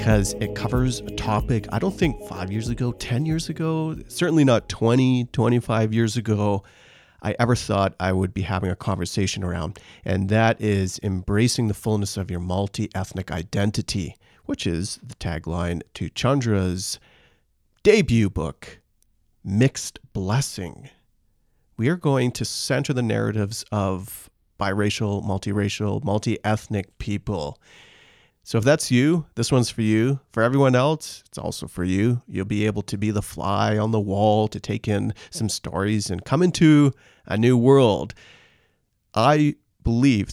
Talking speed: 150 wpm